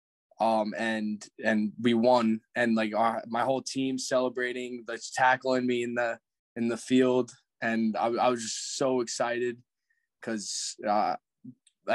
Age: 10-29